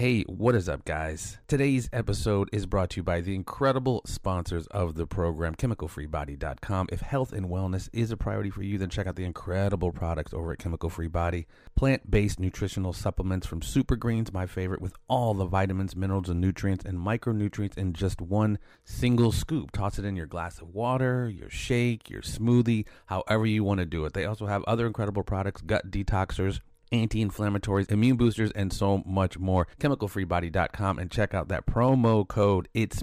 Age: 30-49